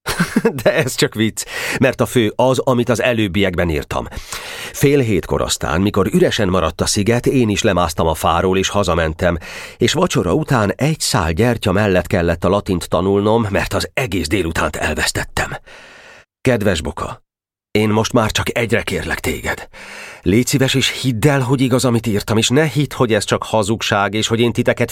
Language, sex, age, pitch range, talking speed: Hungarian, male, 40-59, 95-130 Hz, 175 wpm